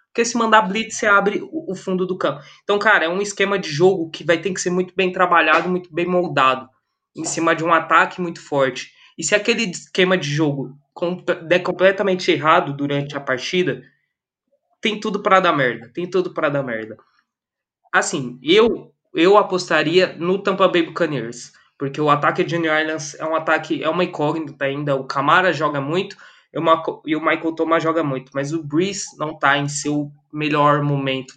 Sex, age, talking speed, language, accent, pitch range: male, 20-39, 190 wpm, Portuguese, Brazilian, 145-180 Hz